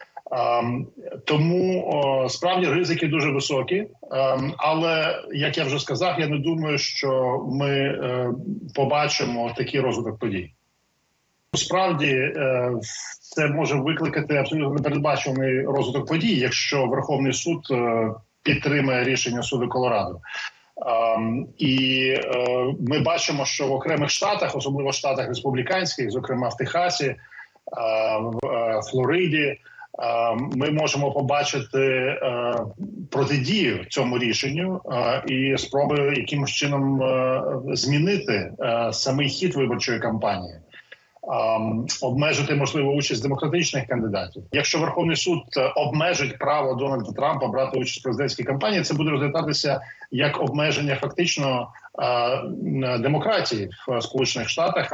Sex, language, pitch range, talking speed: male, Ukrainian, 125-150 Hz, 100 wpm